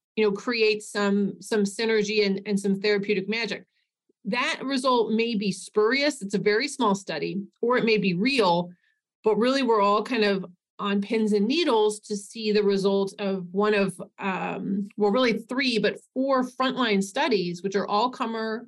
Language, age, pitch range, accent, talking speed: English, 30-49, 195-235 Hz, American, 175 wpm